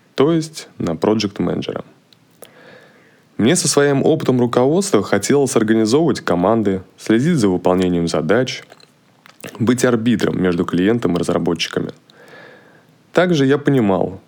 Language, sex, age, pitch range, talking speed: Russian, male, 20-39, 90-125 Hz, 105 wpm